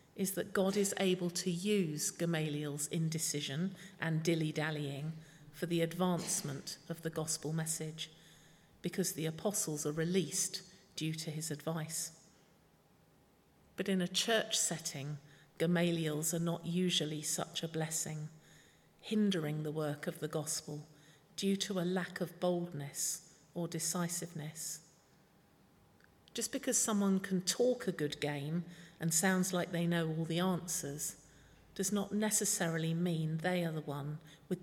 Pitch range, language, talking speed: 155-180 Hz, English, 135 wpm